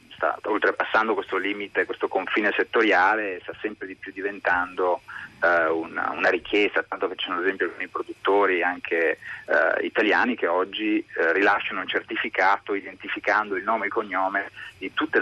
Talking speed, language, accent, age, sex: 160 wpm, Italian, native, 30-49, male